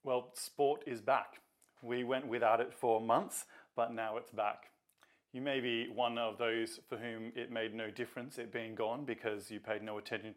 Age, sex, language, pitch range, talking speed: 20-39, male, English, 115-145 Hz, 195 wpm